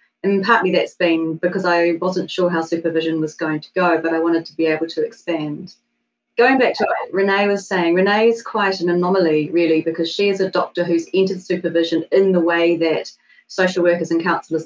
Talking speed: 210 wpm